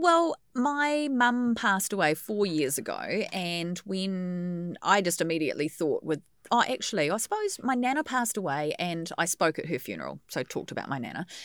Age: 30-49